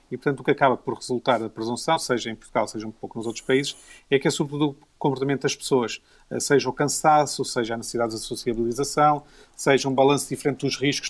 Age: 40-59